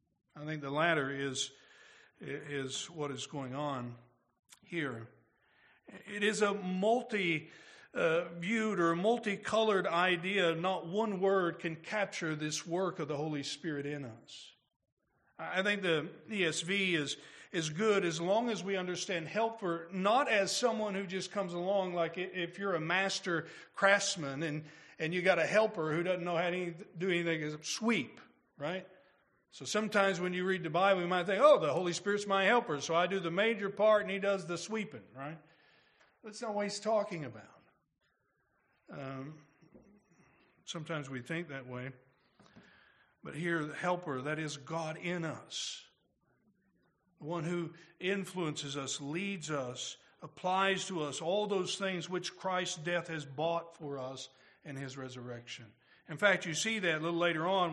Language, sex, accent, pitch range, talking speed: English, male, American, 155-195 Hz, 160 wpm